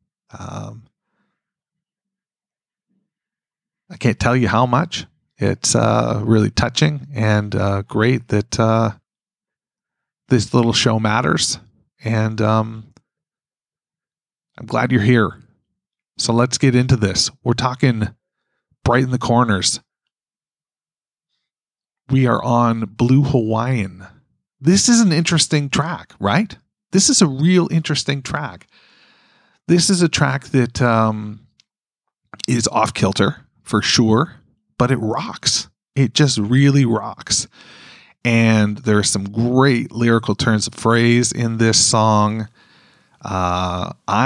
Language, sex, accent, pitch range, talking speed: English, male, American, 110-140 Hz, 115 wpm